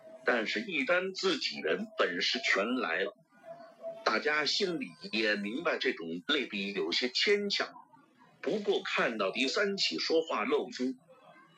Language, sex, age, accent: Chinese, male, 50-69, native